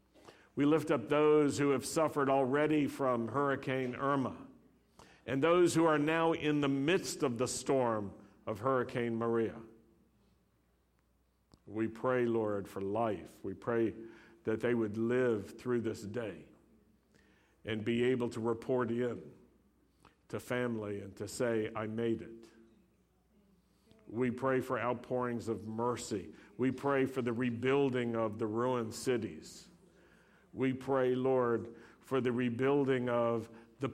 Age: 60-79